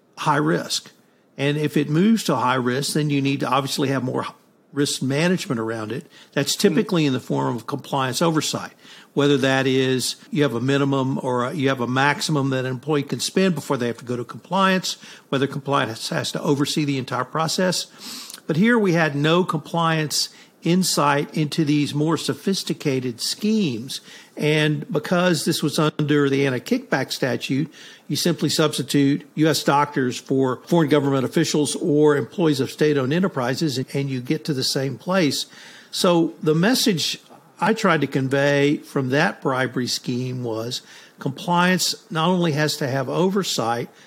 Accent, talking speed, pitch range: American, 165 wpm, 135-170 Hz